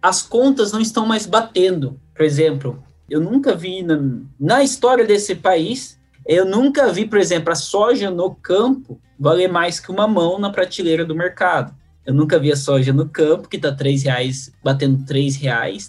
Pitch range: 135-190 Hz